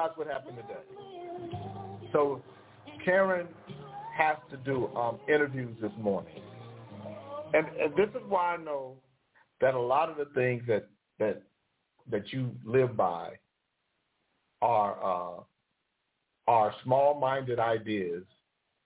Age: 50-69